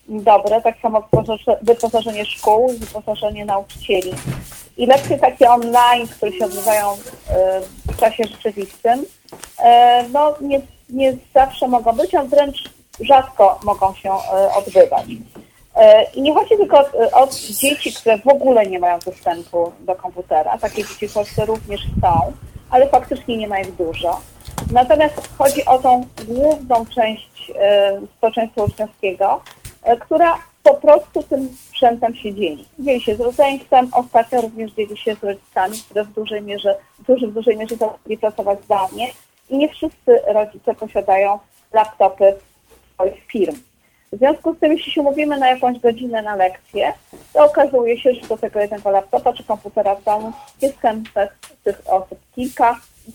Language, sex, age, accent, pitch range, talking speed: Polish, female, 30-49, native, 200-265 Hz, 150 wpm